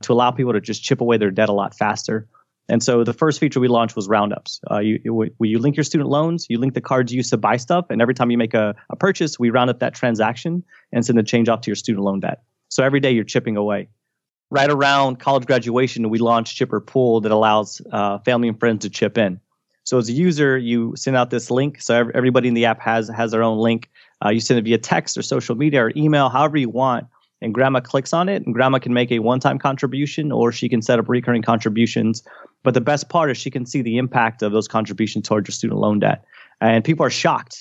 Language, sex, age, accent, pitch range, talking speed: English, male, 30-49, American, 110-130 Hz, 255 wpm